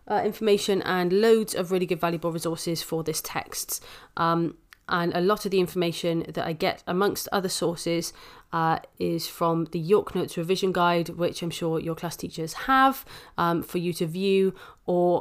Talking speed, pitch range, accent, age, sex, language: 180 wpm, 170-210 Hz, British, 30-49, female, English